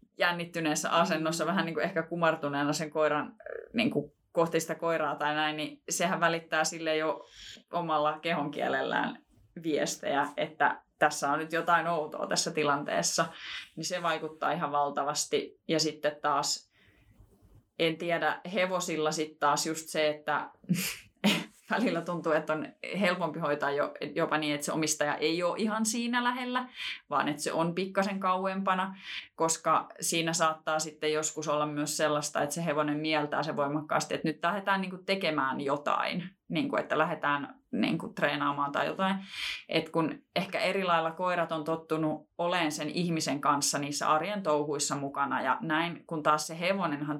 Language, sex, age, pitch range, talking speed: Finnish, female, 20-39, 150-170 Hz, 155 wpm